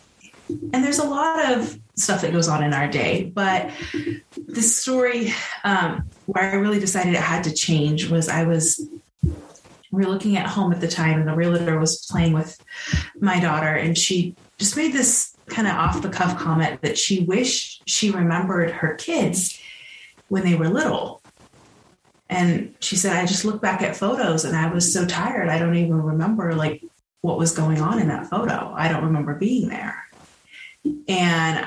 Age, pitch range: 30-49, 165-205 Hz